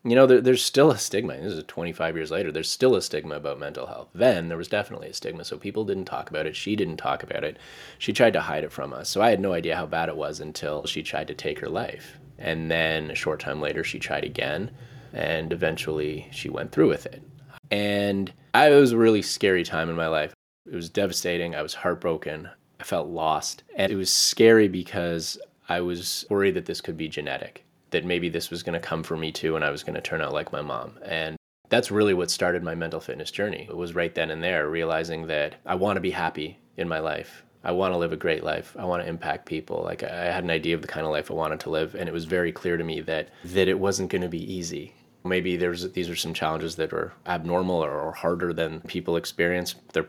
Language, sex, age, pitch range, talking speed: English, male, 20-39, 80-95 Hz, 240 wpm